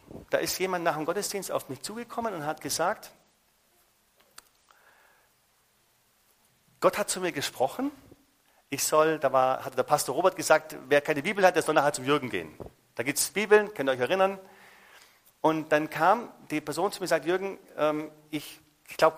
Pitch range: 140-185 Hz